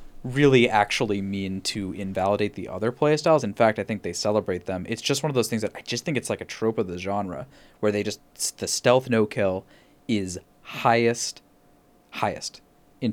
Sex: male